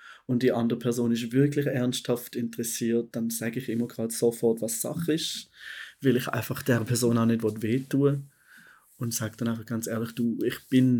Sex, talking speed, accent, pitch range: male, 190 wpm, German, 115-140 Hz